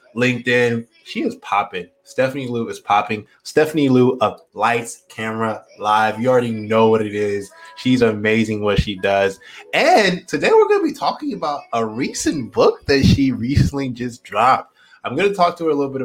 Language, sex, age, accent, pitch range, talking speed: English, male, 20-39, American, 105-130 Hz, 185 wpm